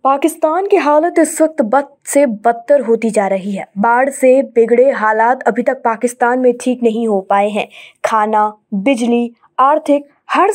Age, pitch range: 20-39, 230-290 Hz